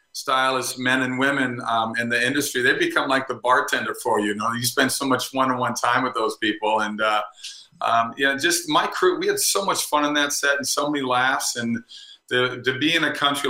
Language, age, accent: English, 40-59, American